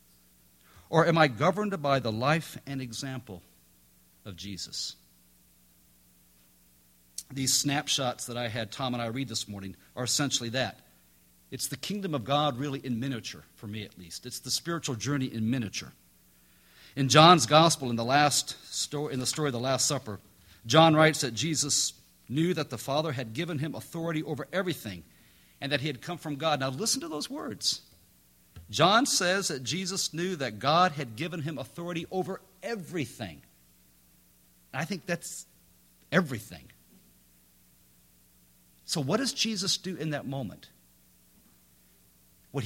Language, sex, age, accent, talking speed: English, male, 50-69, American, 155 wpm